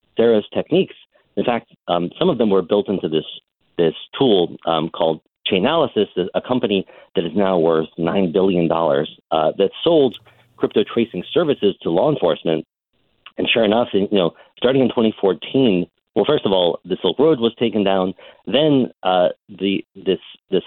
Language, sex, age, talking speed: English, male, 40-59, 165 wpm